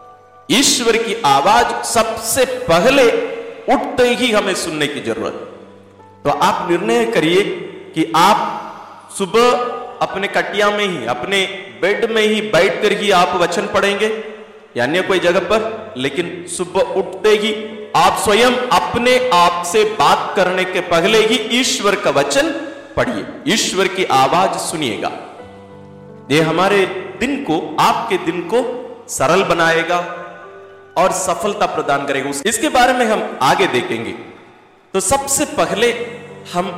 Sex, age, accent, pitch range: male, 50-69, native, 170-245 Hz